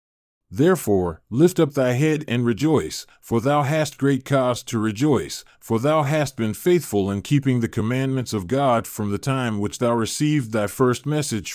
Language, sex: English, male